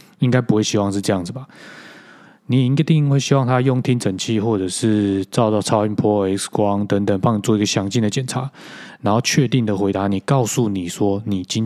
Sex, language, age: male, Chinese, 20-39